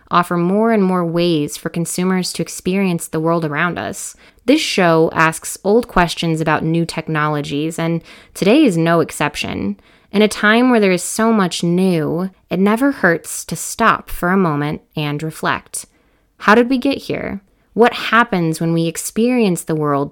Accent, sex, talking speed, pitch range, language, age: American, female, 170 wpm, 160-200 Hz, English, 20-39